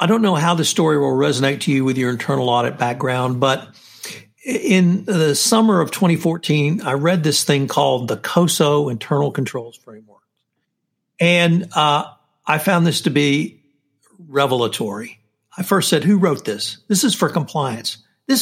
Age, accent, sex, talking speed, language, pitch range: 60-79, American, male, 165 wpm, English, 135-170 Hz